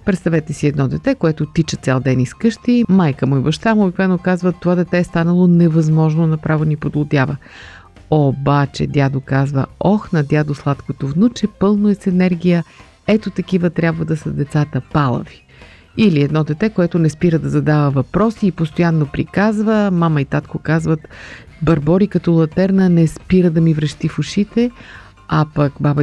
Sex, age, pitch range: female, 50-69, 150-185 Hz